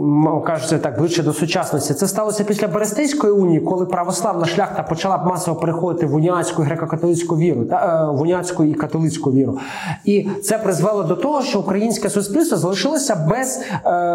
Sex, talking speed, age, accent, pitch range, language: male, 155 wpm, 20-39, native, 155-200 Hz, Russian